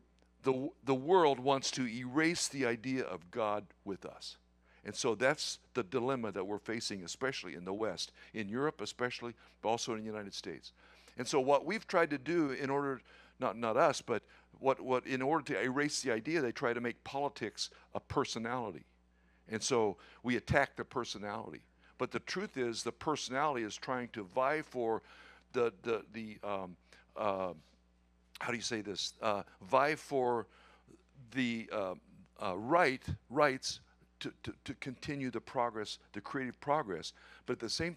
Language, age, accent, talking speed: English, 60-79, American, 170 wpm